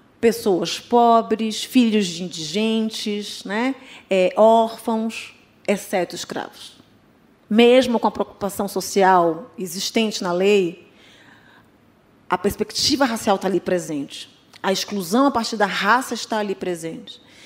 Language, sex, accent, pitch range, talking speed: Portuguese, female, Brazilian, 200-260 Hz, 110 wpm